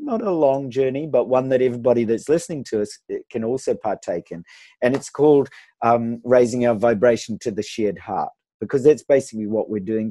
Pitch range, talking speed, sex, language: 110-135 Hz, 195 wpm, male, English